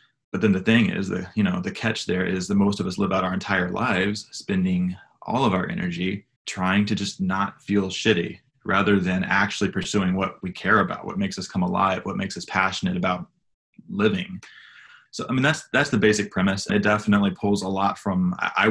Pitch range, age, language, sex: 95-105 Hz, 20-39, English, male